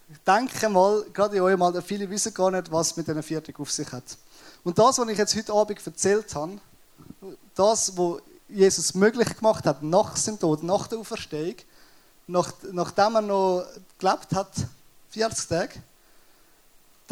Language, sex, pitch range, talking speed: German, male, 160-195 Hz, 160 wpm